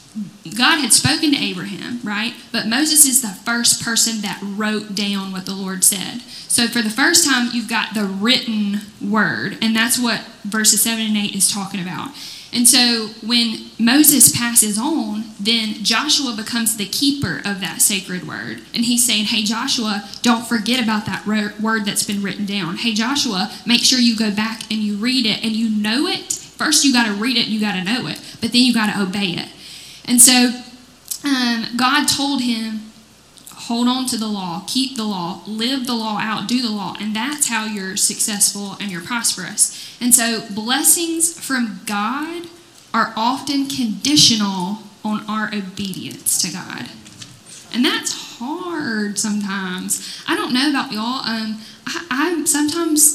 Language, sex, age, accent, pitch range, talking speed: English, female, 10-29, American, 205-245 Hz, 175 wpm